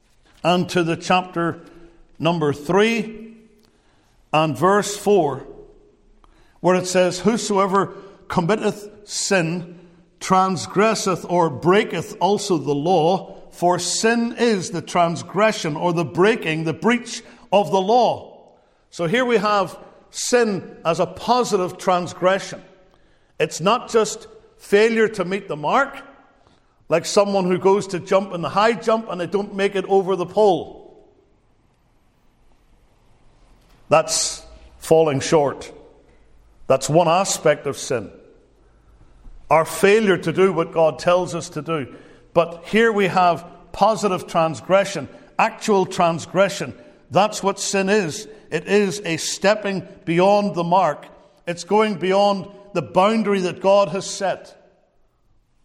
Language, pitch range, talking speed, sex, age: English, 170-205 Hz, 125 wpm, male, 50-69